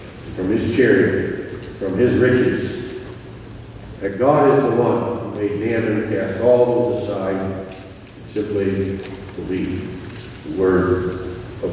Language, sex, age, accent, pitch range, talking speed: English, male, 50-69, American, 110-130 Hz, 130 wpm